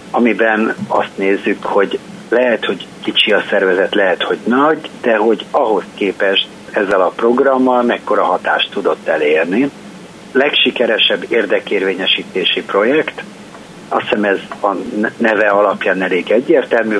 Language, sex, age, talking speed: Hungarian, male, 60-79, 120 wpm